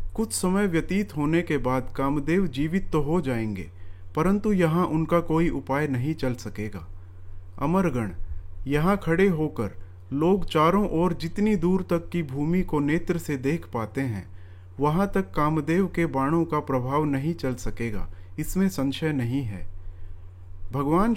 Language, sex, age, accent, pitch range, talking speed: Hindi, male, 40-59, native, 110-175 Hz, 145 wpm